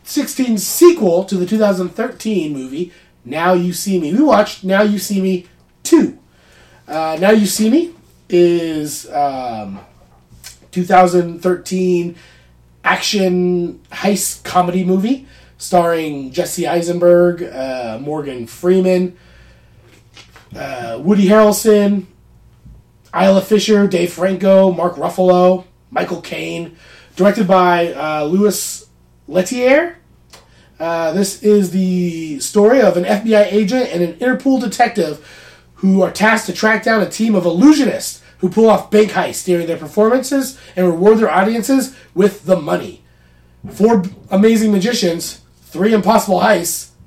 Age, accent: 30-49, American